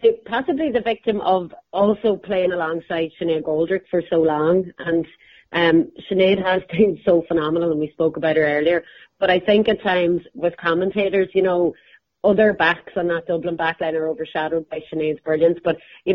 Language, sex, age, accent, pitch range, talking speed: English, female, 30-49, Irish, 155-180 Hz, 175 wpm